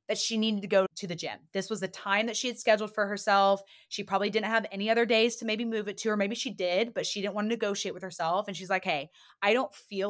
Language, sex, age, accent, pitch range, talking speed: English, female, 20-39, American, 185-240 Hz, 285 wpm